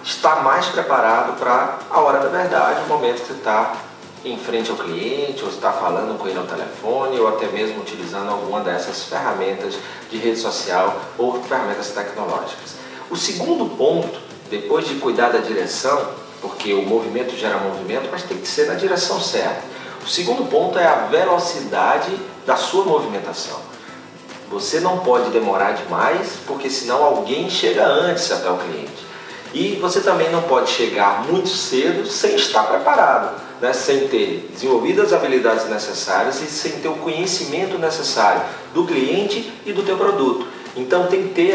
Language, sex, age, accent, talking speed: Portuguese, male, 40-59, Brazilian, 165 wpm